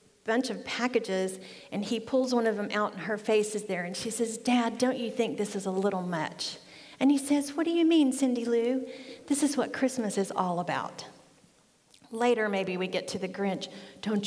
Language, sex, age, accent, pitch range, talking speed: English, female, 40-59, American, 195-240 Hz, 215 wpm